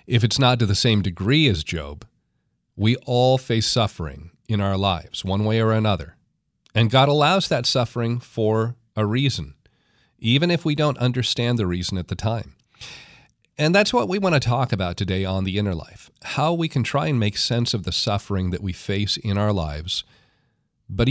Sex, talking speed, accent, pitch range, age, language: male, 195 wpm, American, 95-130 Hz, 40-59, English